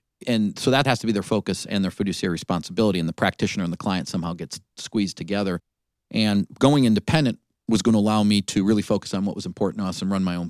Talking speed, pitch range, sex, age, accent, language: 245 wpm, 95-115 Hz, male, 40-59, American, English